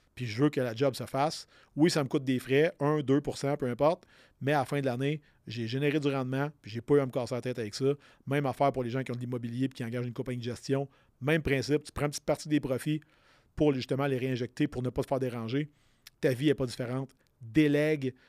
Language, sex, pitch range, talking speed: French, male, 130-150 Hz, 265 wpm